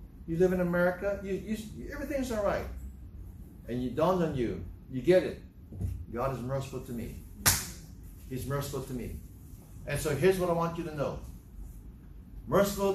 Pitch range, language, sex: 105-180 Hz, English, male